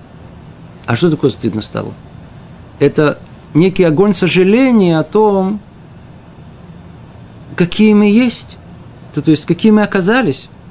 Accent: native